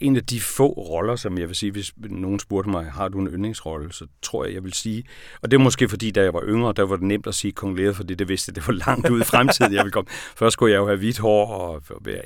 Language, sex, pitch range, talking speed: Danish, male, 85-110 Hz, 300 wpm